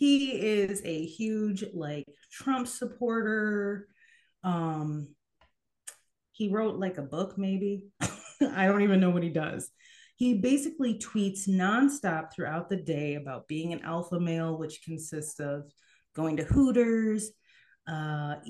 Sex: female